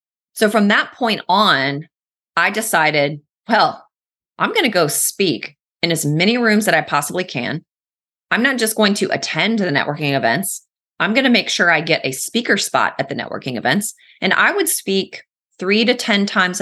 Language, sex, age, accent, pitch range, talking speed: English, female, 30-49, American, 155-210 Hz, 190 wpm